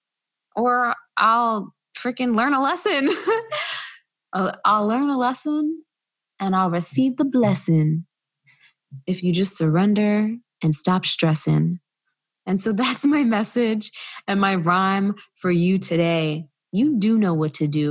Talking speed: 135 wpm